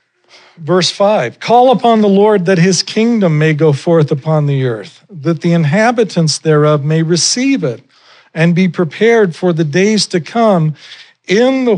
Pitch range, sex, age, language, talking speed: 125-170 Hz, male, 50-69, English, 165 wpm